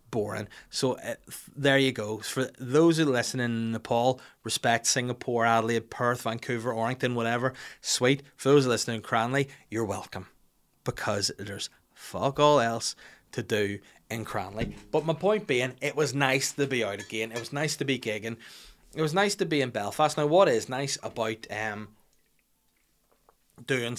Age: 20-39